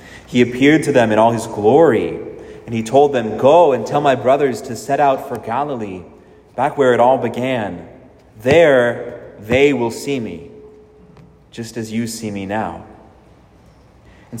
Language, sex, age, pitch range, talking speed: English, male, 30-49, 105-135 Hz, 165 wpm